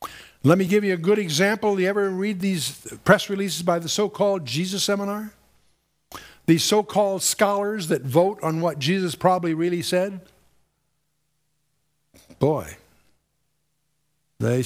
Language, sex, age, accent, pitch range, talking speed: English, male, 60-79, American, 145-190 Hz, 125 wpm